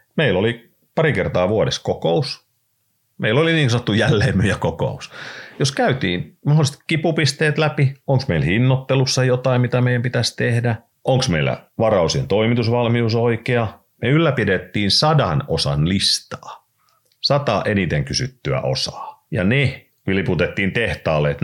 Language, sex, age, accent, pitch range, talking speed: Finnish, male, 40-59, native, 95-130 Hz, 120 wpm